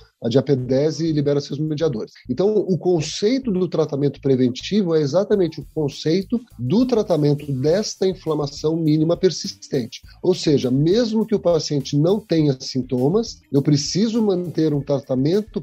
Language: Portuguese